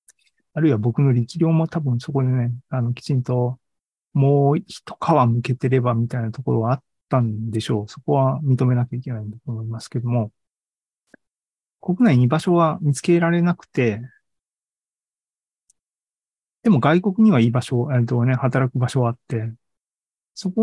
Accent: native